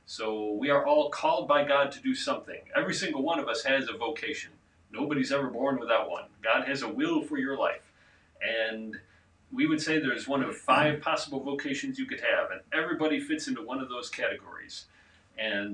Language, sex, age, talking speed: English, male, 40-59, 200 wpm